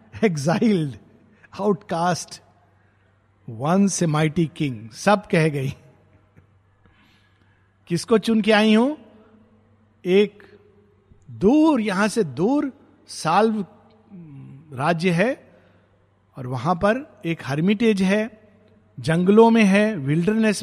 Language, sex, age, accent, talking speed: Hindi, male, 50-69, native, 95 wpm